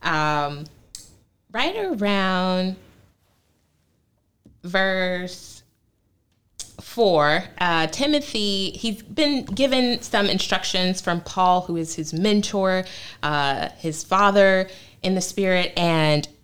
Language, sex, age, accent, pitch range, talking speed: English, female, 20-39, American, 150-200 Hz, 90 wpm